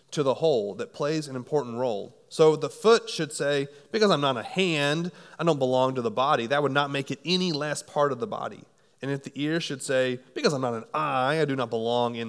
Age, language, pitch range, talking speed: 30-49, English, 125-160 Hz, 250 wpm